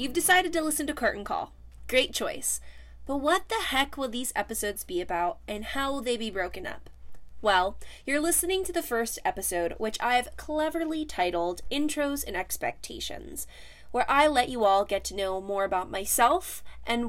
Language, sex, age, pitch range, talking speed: English, female, 20-39, 200-290 Hz, 185 wpm